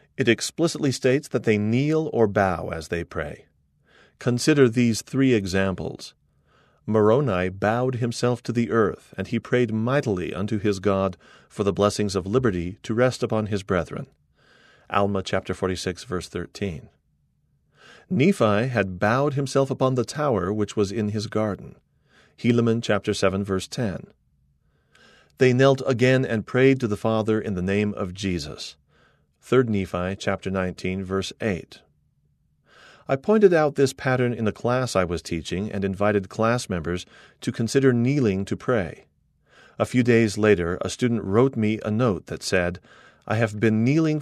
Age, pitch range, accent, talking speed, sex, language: 40-59, 95-125 Hz, American, 155 wpm, male, English